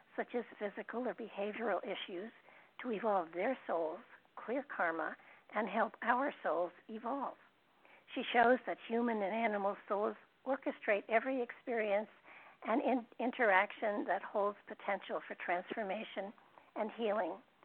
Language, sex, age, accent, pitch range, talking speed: English, female, 60-79, American, 195-235 Hz, 120 wpm